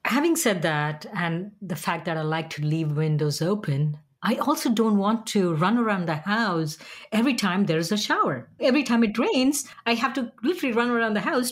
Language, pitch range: English, 160-240 Hz